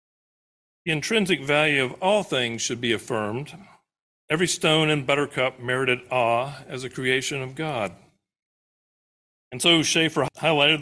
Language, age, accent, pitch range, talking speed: English, 50-69, American, 135-170 Hz, 135 wpm